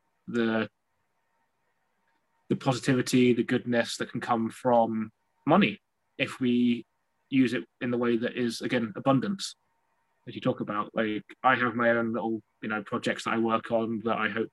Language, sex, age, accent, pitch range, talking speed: English, male, 20-39, British, 115-135 Hz, 170 wpm